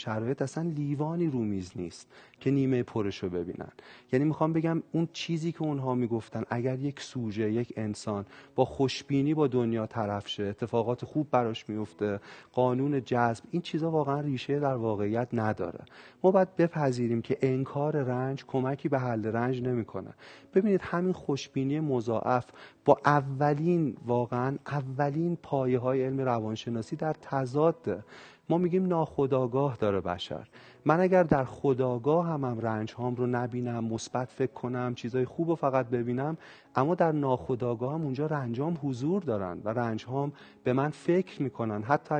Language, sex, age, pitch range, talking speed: Persian, male, 40-59, 120-150 Hz, 145 wpm